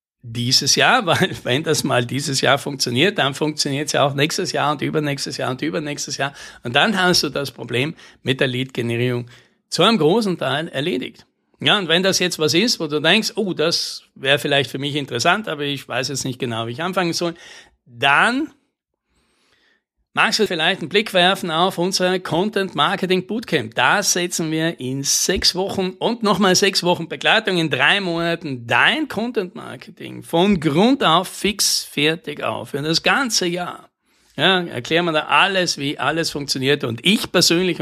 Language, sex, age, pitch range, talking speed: German, male, 60-79, 140-185 Hz, 175 wpm